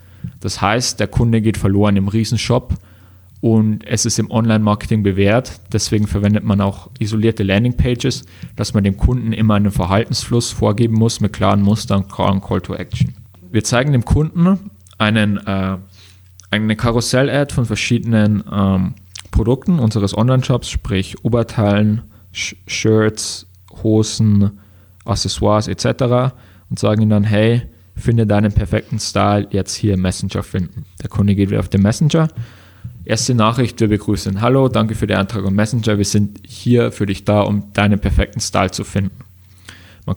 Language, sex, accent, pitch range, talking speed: German, male, German, 100-115 Hz, 145 wpm